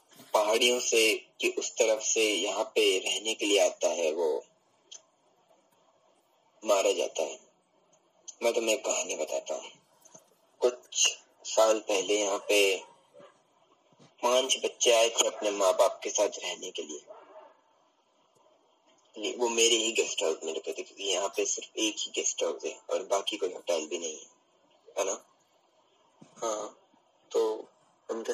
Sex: male